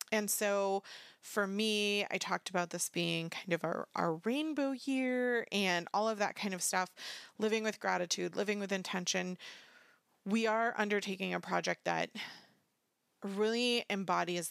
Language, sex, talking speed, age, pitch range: English, female, 150 wpm, 30-49, 175-210 Hz